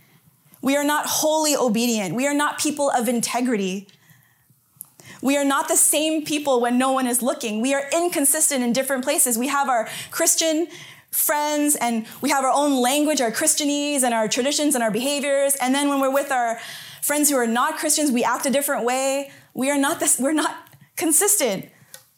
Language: English